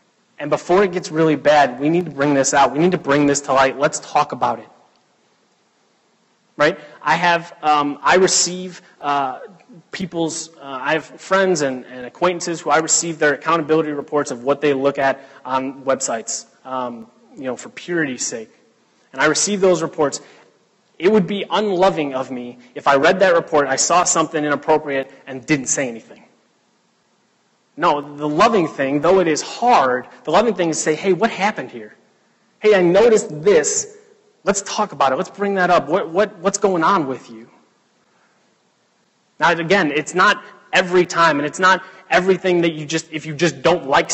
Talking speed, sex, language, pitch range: 180 wpm, male, English, 145-185 Hz